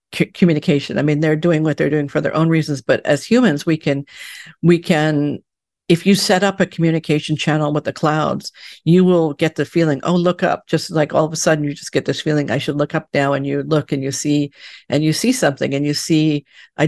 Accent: American